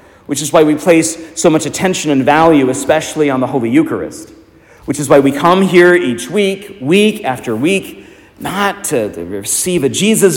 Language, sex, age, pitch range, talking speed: English, male, 40-59, 115-170 Hz, 180 wpm